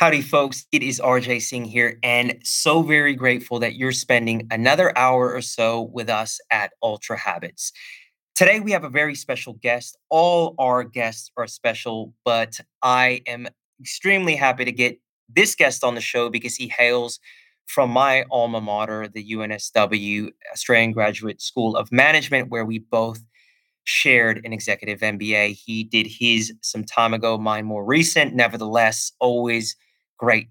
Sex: male